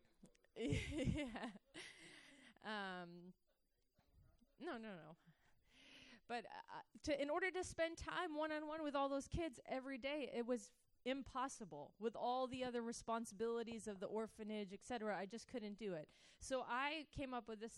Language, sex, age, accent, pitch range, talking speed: English, female, 30-49, American, 200-250 Hz, 150 wpm